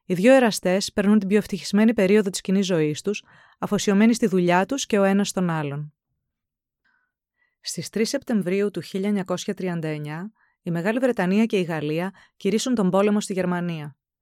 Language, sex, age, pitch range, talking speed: Greek, female, 20-39, 180-220 Hz, 155 wpm